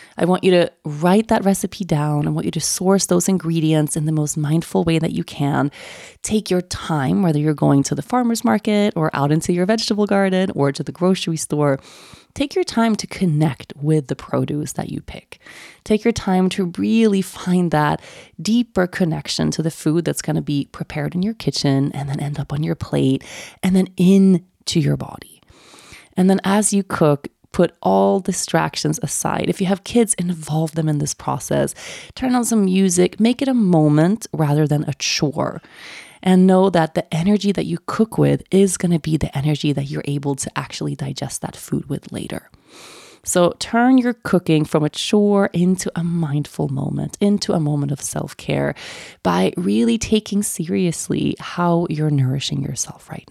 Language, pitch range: English, 150-200 Hz